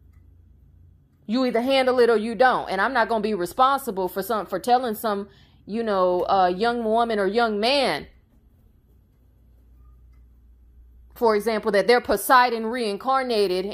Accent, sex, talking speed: American, female, 145 wpm